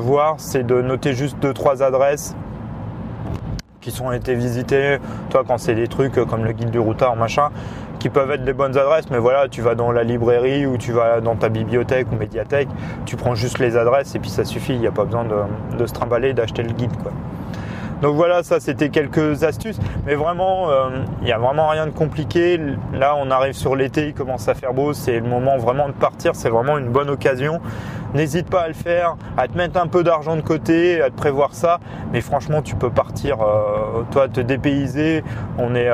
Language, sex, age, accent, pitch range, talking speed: French, male, 20-39, French, 120-145 Hz, 215 wpm